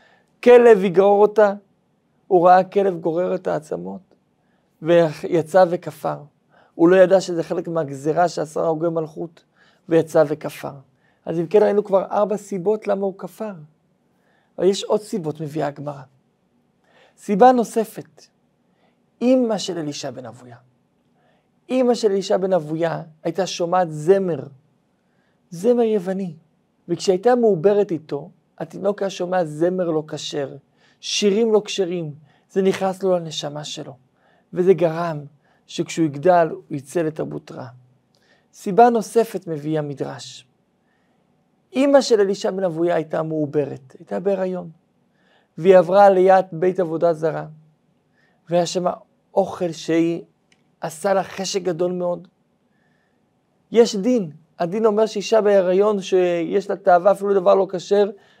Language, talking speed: Hebrew, 120 wpm